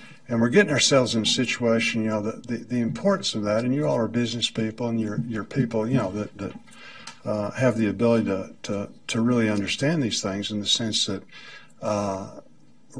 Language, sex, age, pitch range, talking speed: English, male, 50-69, 105-130 Hz, 210 wpm